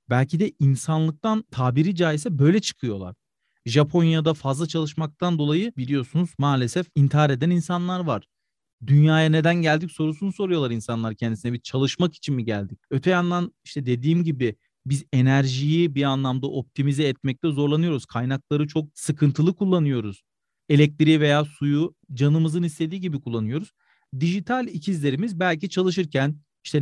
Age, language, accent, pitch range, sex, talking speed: 40-59, Turkish, native, 135-175 Hz, male, 130 wpm